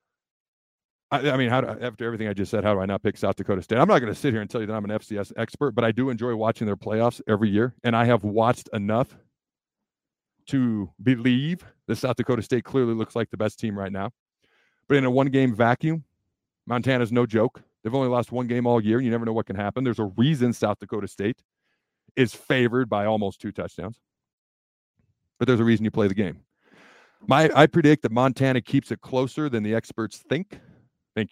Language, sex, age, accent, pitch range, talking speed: English, male, 40-59, American, 105-125 Hz, 220 wpm